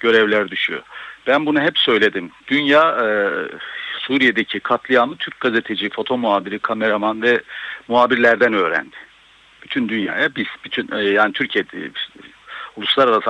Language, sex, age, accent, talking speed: Turkish, male, 60-79, native, 115 wpm